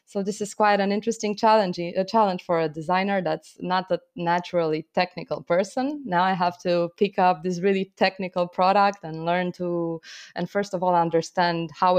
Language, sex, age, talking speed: English, female, 20-39, 185 wpm